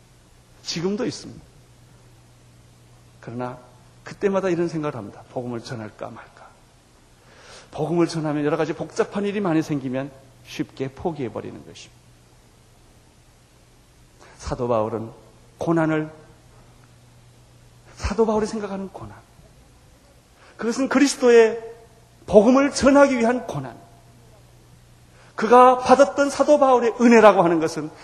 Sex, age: male, 40-59